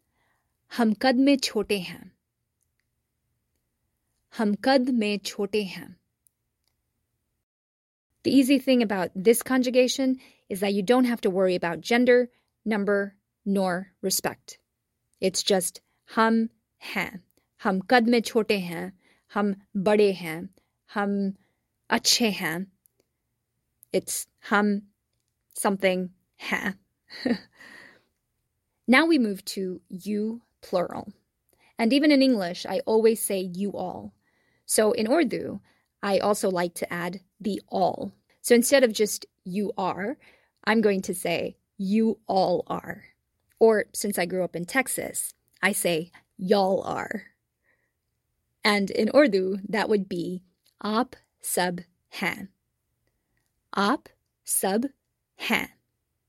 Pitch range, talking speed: 185-225 Hz, 110 wpm